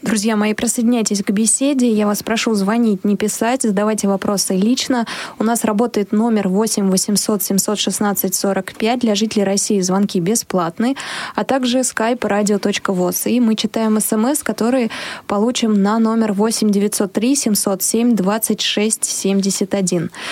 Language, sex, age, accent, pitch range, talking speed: Russian, female, 20-39, native, 200-240 Hz, 125 wpm